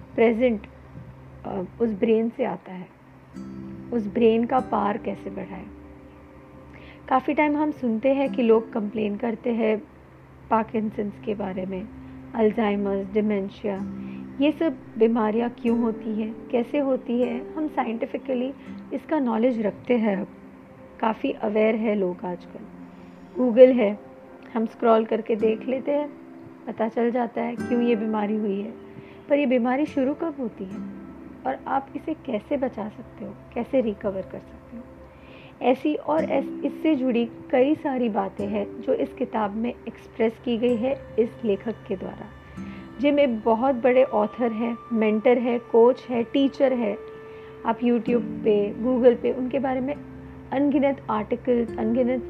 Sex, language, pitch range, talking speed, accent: female, Hindi, 210-255 Hz, 145 wpm, native